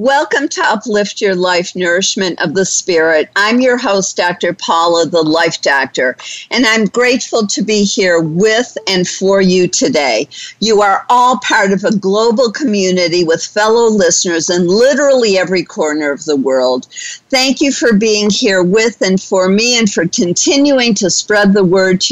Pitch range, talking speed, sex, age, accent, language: 180-225 Hz, 170 wpm, female, 50-69, American, English